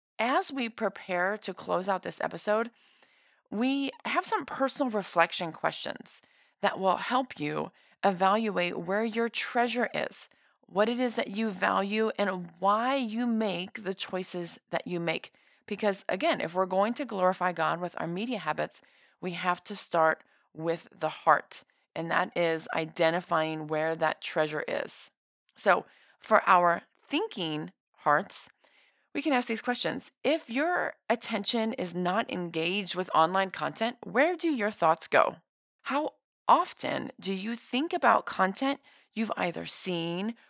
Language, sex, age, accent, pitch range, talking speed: English, female, 30-49, American, 175-235 Hz, 145 wpm